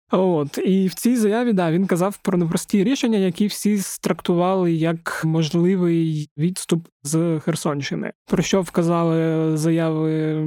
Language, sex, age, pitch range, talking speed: Ukrainian, male, 20-39, 160-185 Hz, 130 wpm